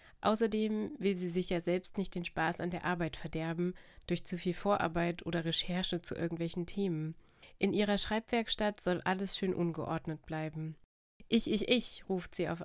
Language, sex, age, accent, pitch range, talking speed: German, female, 20-39, German, 170-190 Hz, 170 wpm